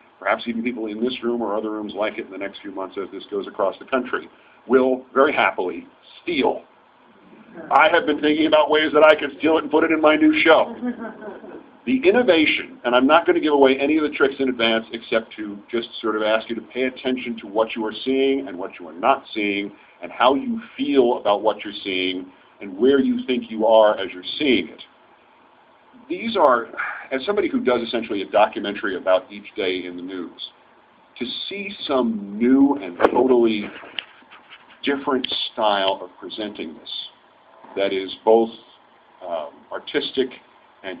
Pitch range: 110-155 Hz